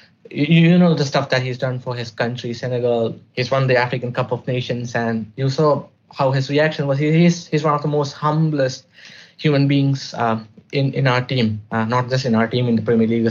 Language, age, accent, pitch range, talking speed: English, 20-39, Indian, 120-150 Hz, 225 wpm